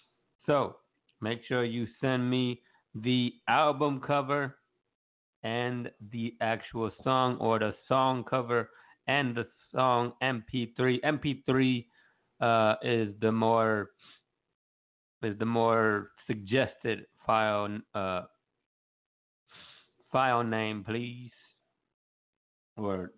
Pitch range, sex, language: 105-125 Hz, male, English